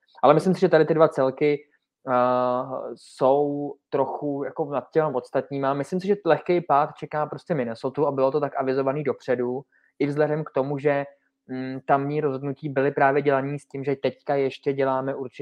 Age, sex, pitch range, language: 20-39, male, 120-140 Hz, Czech